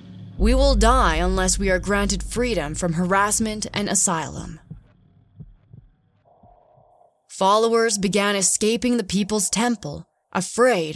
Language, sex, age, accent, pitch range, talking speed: English, female, 20-39, American, 175-225 Hz, 105 wpm